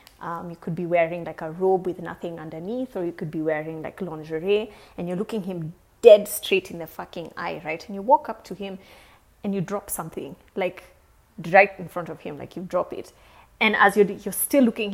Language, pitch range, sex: English, 175-215 Hz, female